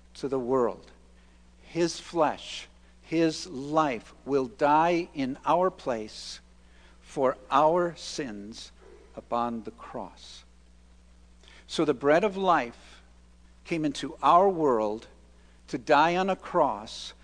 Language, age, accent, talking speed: English, 50-69, American, 110 wpm